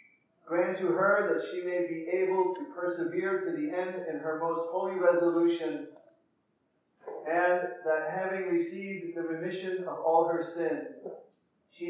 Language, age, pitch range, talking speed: English, 40-59, 165-185 Hz, 145 wpm